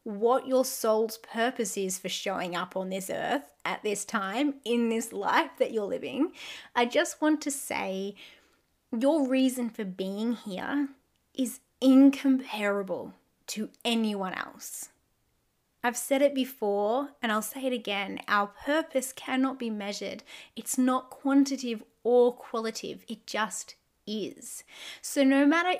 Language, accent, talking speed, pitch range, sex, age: English, Australian, 140 wpm, 220-275 Hz, female, 20-39